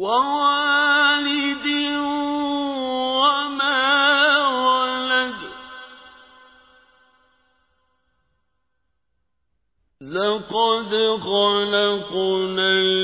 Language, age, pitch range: Arabic, 50-69, 190-255 Hz